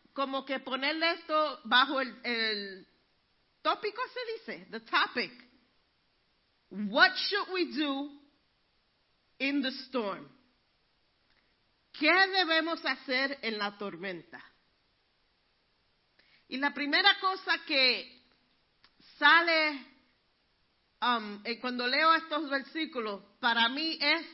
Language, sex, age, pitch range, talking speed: Spanish, female, 40-59, 260-335 Hz, 95 wpm